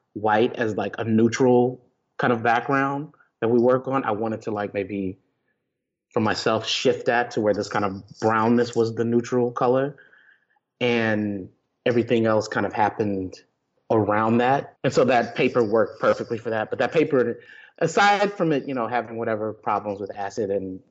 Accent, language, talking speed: American, English, 175 wpm